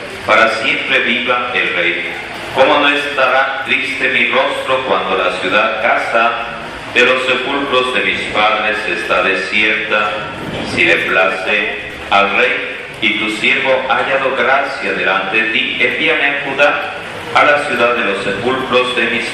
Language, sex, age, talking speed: Spanish, male, 40-59, 150 wpm